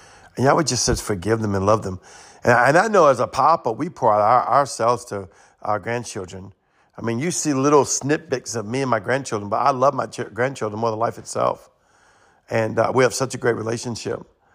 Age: 50-69